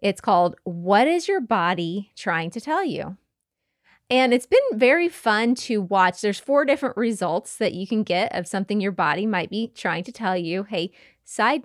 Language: English